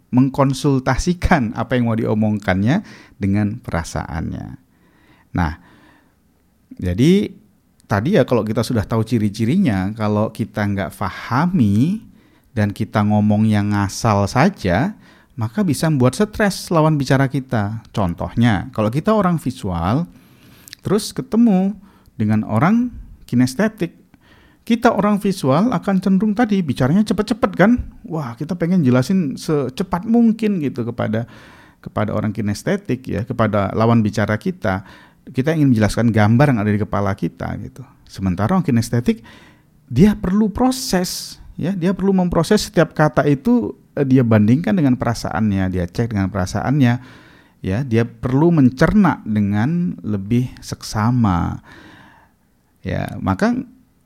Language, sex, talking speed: Indonesian, male, 120 wpm